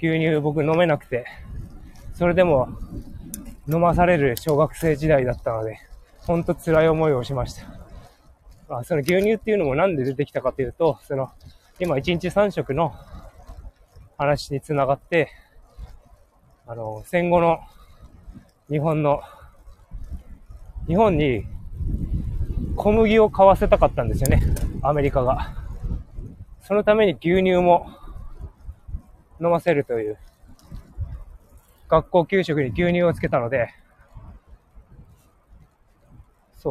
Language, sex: Japanese, male